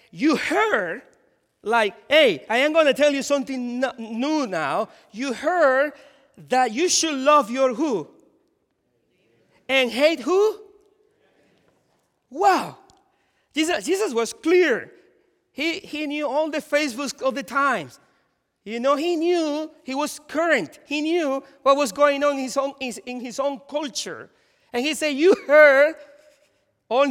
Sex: male